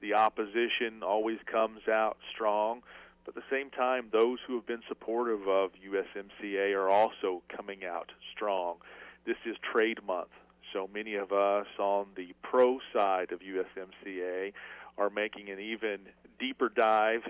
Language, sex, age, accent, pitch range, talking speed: English, male, 40-59, American, 100-120 Hz, 150 wpm